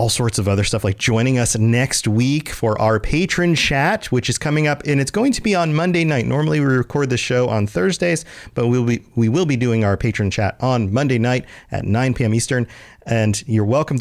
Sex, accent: male, American